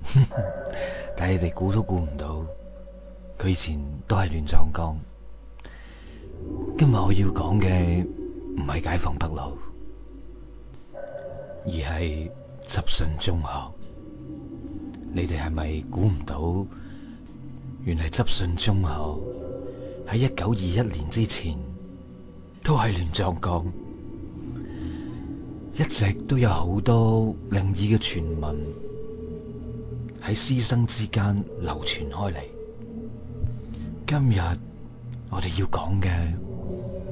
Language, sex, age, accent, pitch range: Chinese, male, 30-49, native, 80-115 Hz